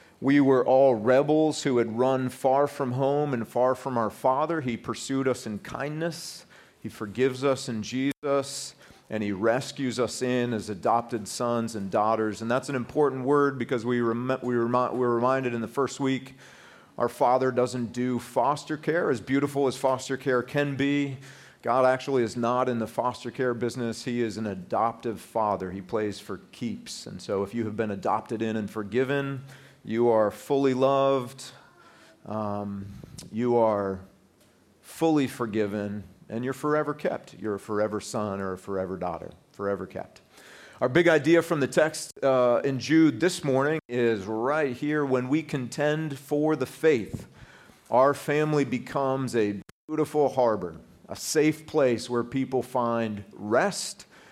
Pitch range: 115-140 Hz